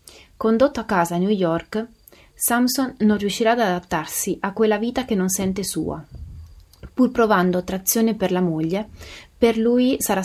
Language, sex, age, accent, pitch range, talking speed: Italian, female, 30-49, native, 180-225 Hz, 160 wpm